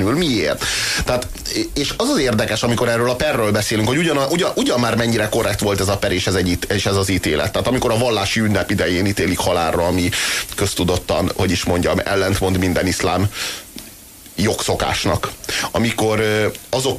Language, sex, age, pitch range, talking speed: Hungarian, male, 30-49, 100-145 Hz, 170 wpm